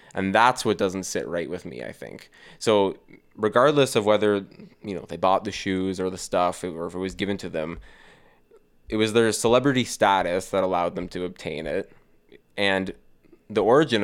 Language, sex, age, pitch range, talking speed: English, male, 20-39, 90-105 Hz, 190 wpm